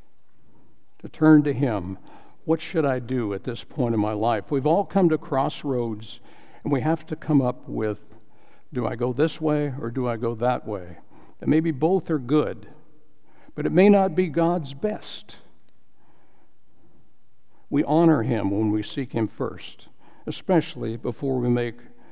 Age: 60-79